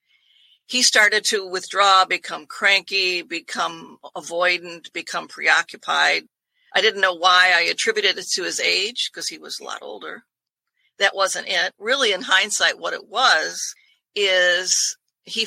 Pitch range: 175-200 Hz